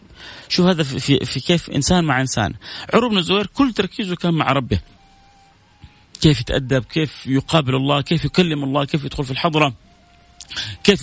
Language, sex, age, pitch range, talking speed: Arabic, male, 30-49, 125-185 Hz, 145 wpm